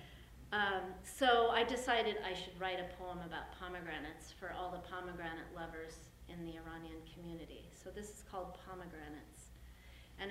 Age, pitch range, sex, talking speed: 30-49, 170-200 Hz, female, 150 wpm